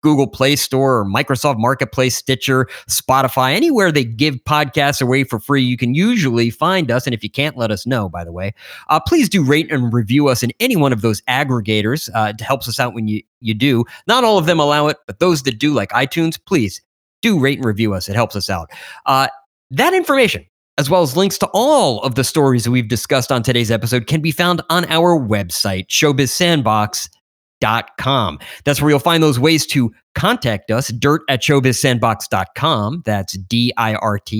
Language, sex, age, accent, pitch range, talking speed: English, male, 30-49, American, 110-155 Hz, 195 wpm